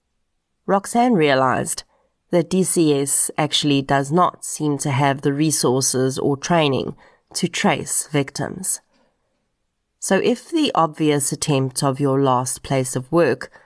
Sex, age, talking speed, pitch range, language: female, 30-49, 125 wpm, 140-175 Hz, English